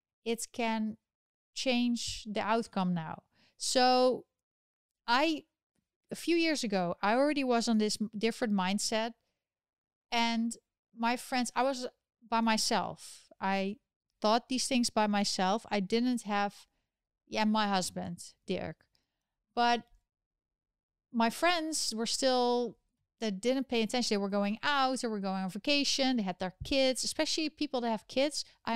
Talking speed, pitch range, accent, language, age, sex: 140 wpm, 205-245 Hz, Dutch, English, 30-49, female